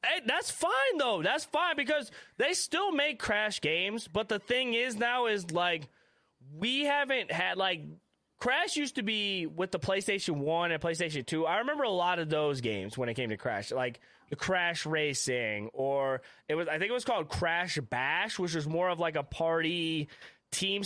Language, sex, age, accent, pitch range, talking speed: English, male, 20-39, American, 140-195 Hz, 195 wpm